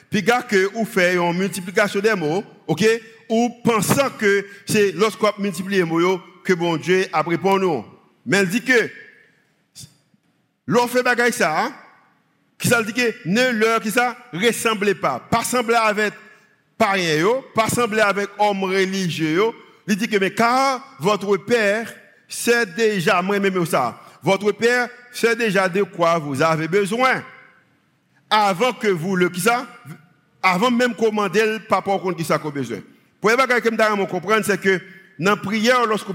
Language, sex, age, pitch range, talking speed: English, male, 50-69, 175-220 Hz, 170 wpm